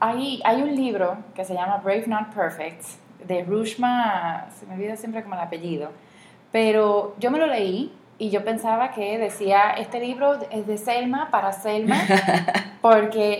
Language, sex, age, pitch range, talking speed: Spanish, female, 20-39, 190-230 Hz, 165 wpm